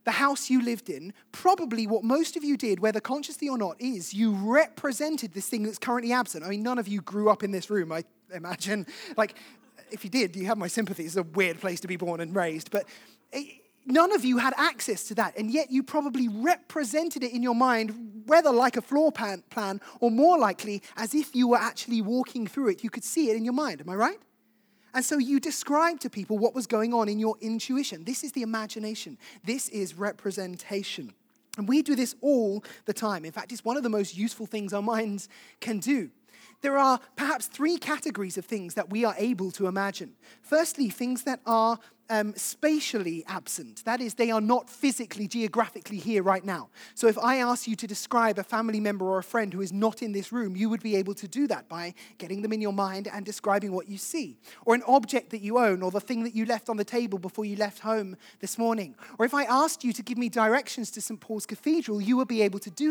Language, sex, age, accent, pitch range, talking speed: English, male, 20-39, British, 205-255 Hz, 230 wpm